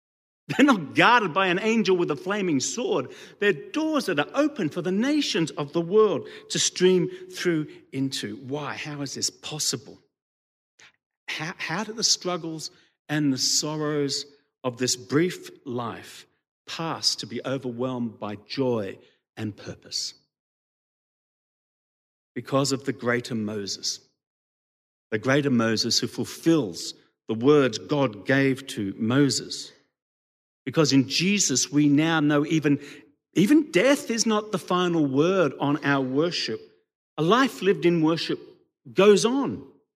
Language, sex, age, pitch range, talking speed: English, male, 50-69, 130-185 Hz, 135 wpm